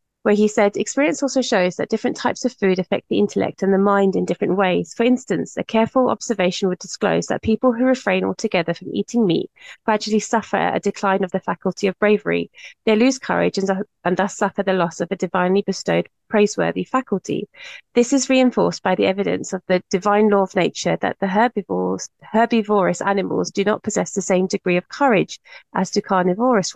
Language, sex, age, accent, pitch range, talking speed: English, female, 30-49, British, 190-225 Hz, 195 wpm